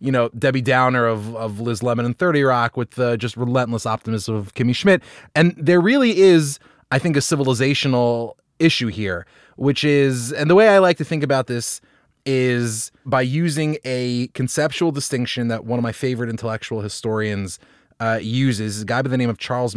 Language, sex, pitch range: English, male, 115-135 Hz